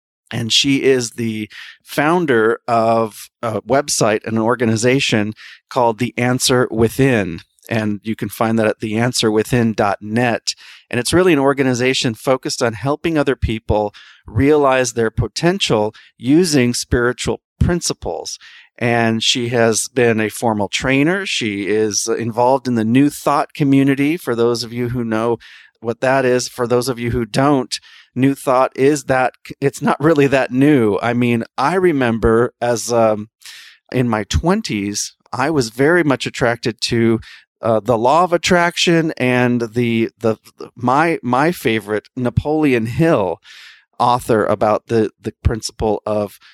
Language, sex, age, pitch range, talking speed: English, male, 40-59, 110-140 Hz, 145 wpm